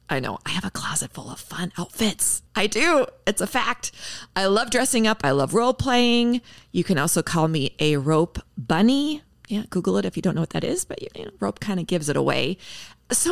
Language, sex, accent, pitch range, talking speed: English, female, American, 155-220 Hz, 215 wpm